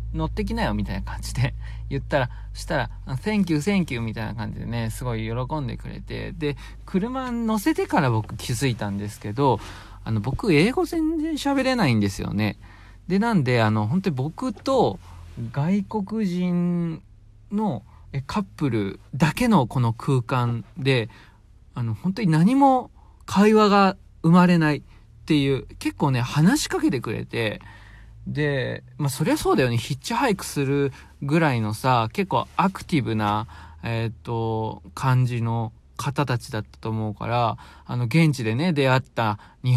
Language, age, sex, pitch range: Japanese, 40-59, male, 110-175 Hz